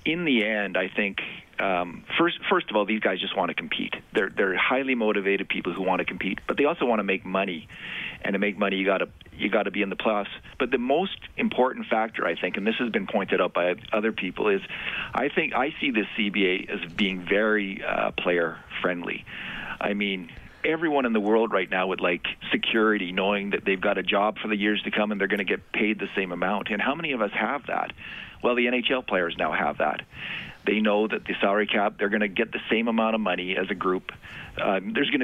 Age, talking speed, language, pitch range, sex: 40-59, 235 wpm, English, 95-110 Hz, male